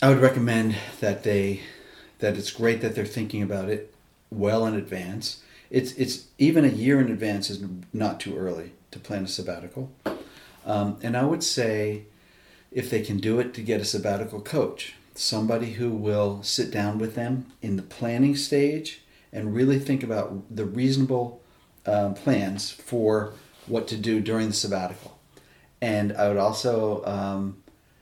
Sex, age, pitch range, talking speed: male, 40-59, 105-120 Hz, 165 wpm